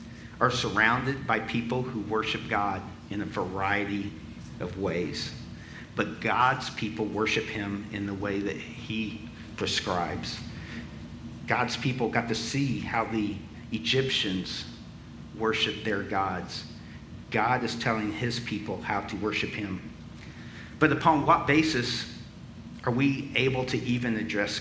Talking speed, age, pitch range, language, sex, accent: 130 wpm, 50-69, 100-120 Hz, English, male, American